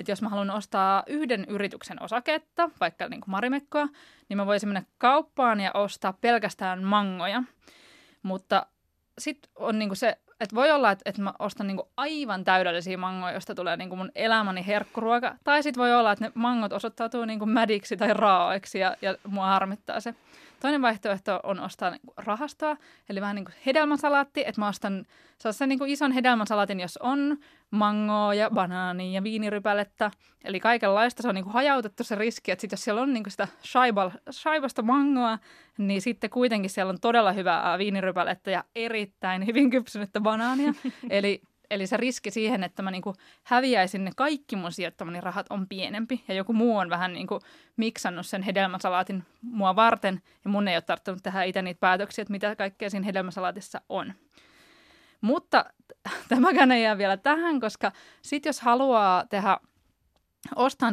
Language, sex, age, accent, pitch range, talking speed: Finnish, female, 20-39, native, 195-255 Hz, 175 wpm